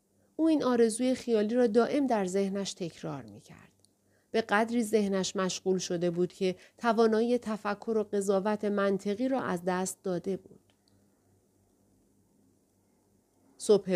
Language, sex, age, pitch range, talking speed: Persian, female, 40-59, 175-235 Hz, 120 wpm